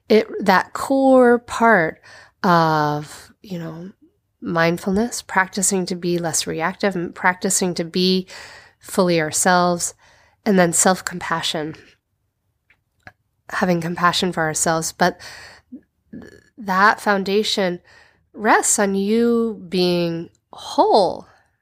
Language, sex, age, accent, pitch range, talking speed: English, female, 30-49, American, 155-205 Hz, 95 wpm